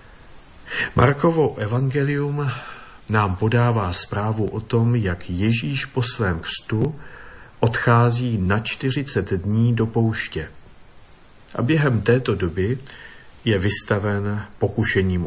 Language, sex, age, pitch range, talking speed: Slovak, male, 50-69, 95-125 Hz, 100 wpm